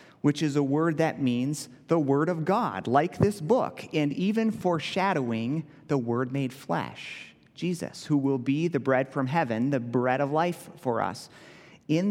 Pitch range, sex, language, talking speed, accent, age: 125-160 Hz, male, English, 175 wpm, American, 30-49